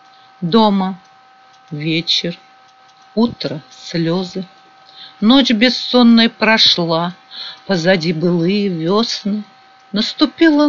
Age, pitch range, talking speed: 50-69, 180-255 Hz, 60 wpm